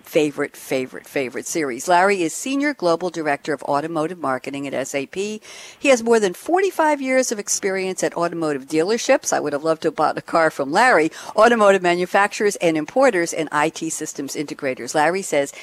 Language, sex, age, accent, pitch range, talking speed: English, female, 60-79, American, 155-210 Hz, 175 wpm